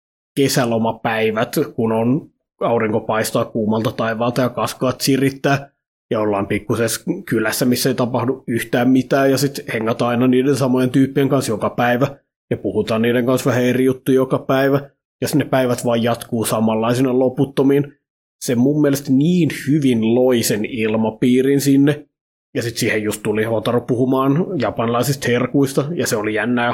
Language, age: Finnish, 30-49